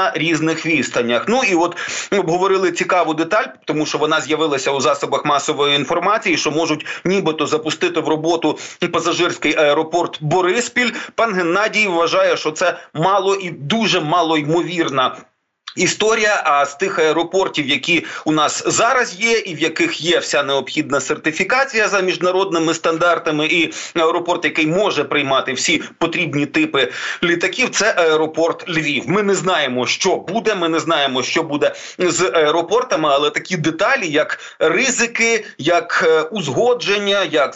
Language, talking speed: Ukrainian, 145 wpm